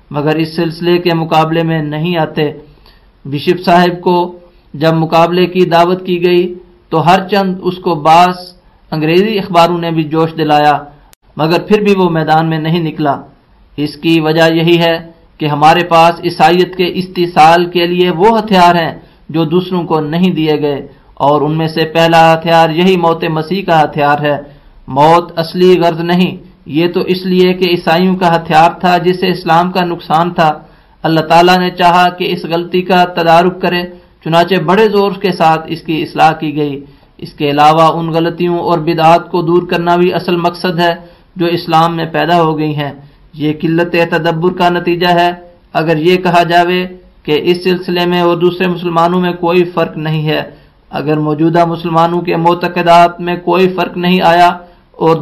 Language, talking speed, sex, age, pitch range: English, 170 wpm, male, 50-69, 160-180 Hz